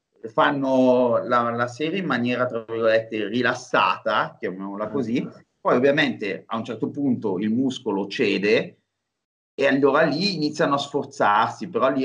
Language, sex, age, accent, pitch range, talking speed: Italian, male, 30-49, native, 110-140 Hz, 140 wpm